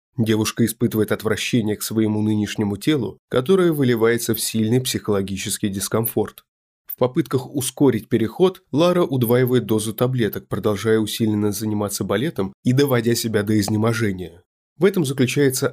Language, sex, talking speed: Russian, male, 125 wpm